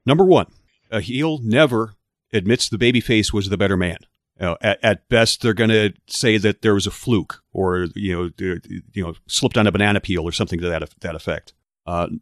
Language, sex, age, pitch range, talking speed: English, male, 40-59, 95-115 Hz, 210 wpm